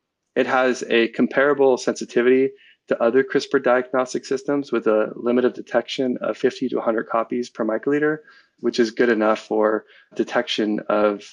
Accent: American